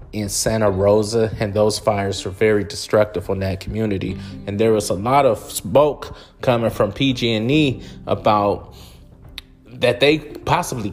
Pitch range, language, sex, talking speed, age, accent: 105-125 Hz, English, male, 145 wpm, 30-49, American